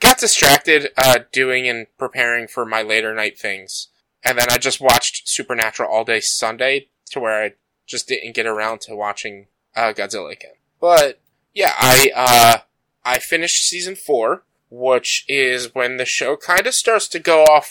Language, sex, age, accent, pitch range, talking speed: English, male, 20-39, American, 125-165 Hz, 170 wpm